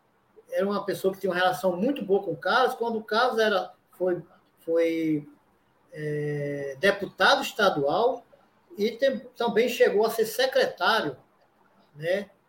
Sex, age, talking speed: male, 20-39, 140 wpm